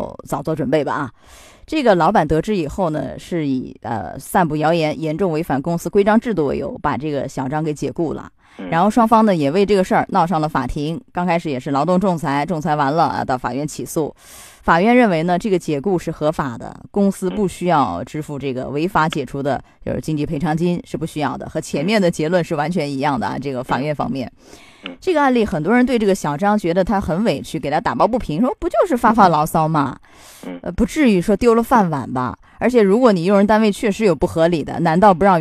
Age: 20-39